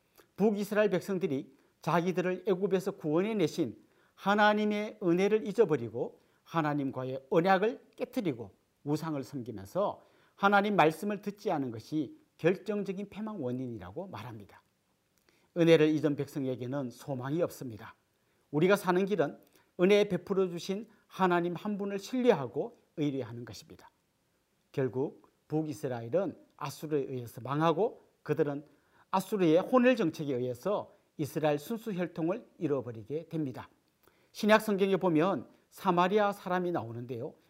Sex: male